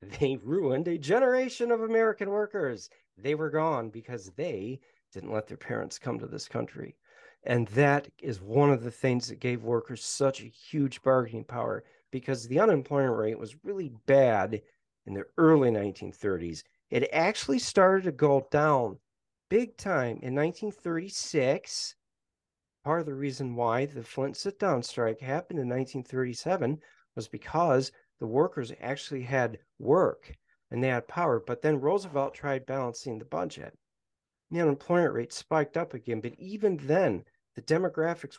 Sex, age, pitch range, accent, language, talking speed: male, 40-59, 120-160 Hz, American, English, 155 wpm